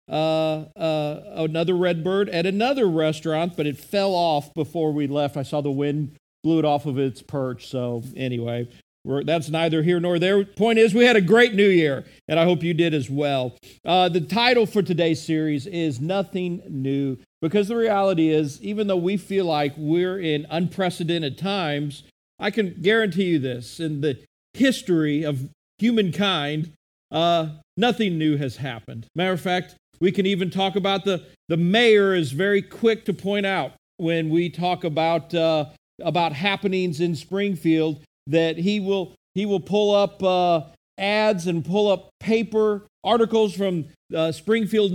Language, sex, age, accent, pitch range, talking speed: English, male, 50-69, American, 155-200 Hz, 170 wpm